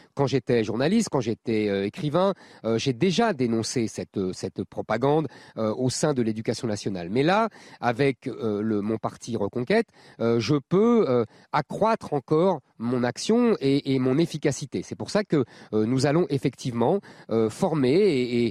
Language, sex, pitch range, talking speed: French, male, 110-150 Hz, 155 wpm